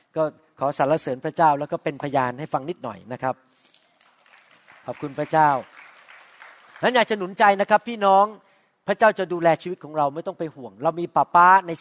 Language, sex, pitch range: Thai, male, 155-210 Hz